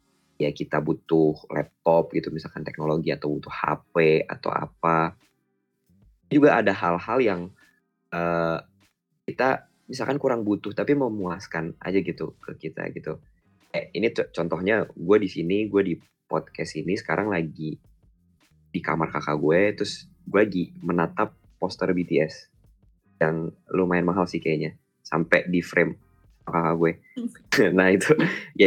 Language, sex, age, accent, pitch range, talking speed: Indonesian, male, 20-39, native, 80-100 Hz, 130 wpm